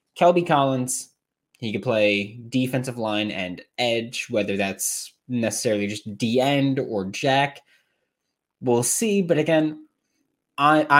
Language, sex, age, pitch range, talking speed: English, male, 20-39, 100-135 Hz, 120 wpm